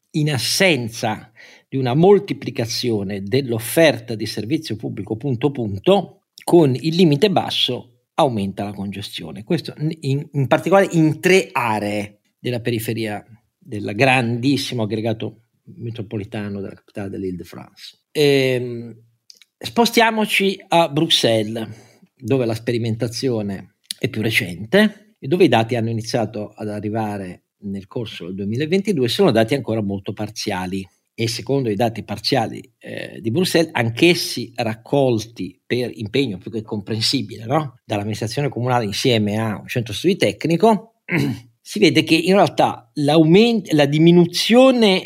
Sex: male